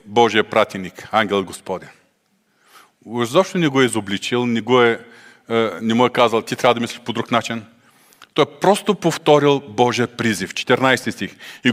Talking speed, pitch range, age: 165 wpm, 120-175 Hz, 40-59